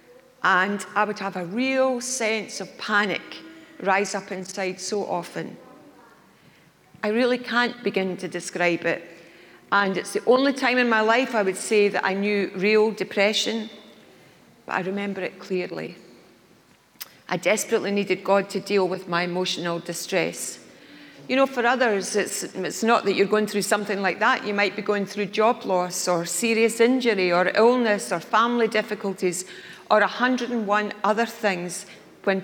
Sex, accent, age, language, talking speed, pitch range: female, British, 40-59, English, 160 wpm, 185-220 Hz